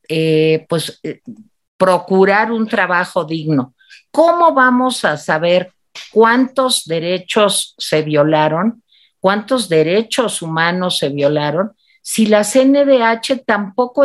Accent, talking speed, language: Mexican, 105 wpm, Spanish